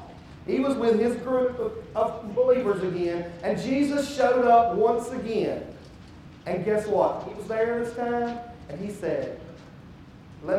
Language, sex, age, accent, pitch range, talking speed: English, male, 40-59, American, 200-255 Hz, 145 wpm